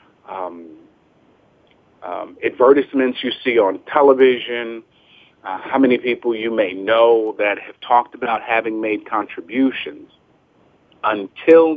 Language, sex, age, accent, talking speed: English, male, 40-59, American, 110 wpm